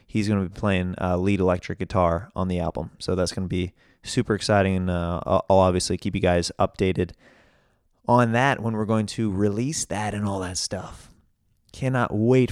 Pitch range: 95-110 Hz